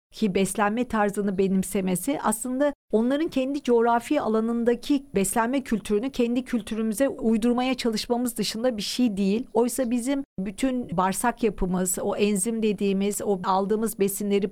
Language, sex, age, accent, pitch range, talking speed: Turkish, female, 50-69, native, 195-245 Hz, 125 wpm